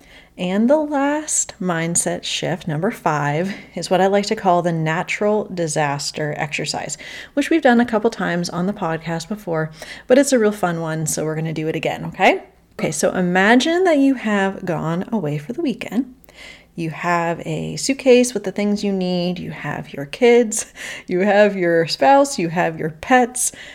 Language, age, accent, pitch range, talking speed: English, 30-49, American, 165-220 Hz, 185 wpm